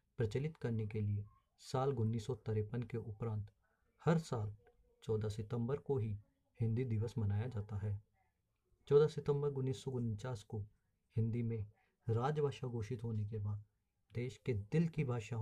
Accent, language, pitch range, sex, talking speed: native, Hindi, 105-130 Hz, male, 130 wpm